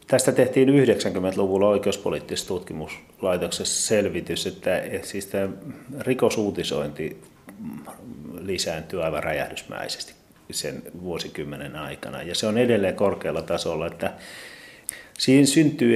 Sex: male